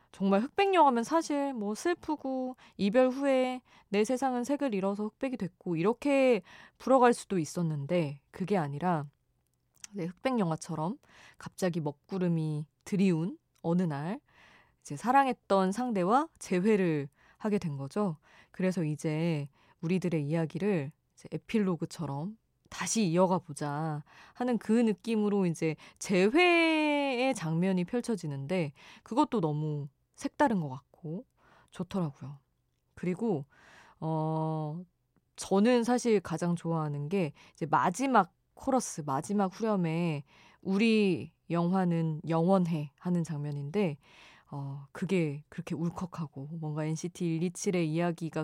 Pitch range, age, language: 155-215 Hz, 20-39, Korean